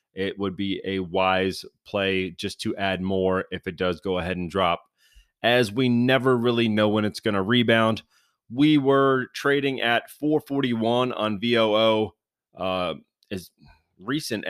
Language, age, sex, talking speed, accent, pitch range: English, 30-49, male, 150 wpm, American, 100-120 Hz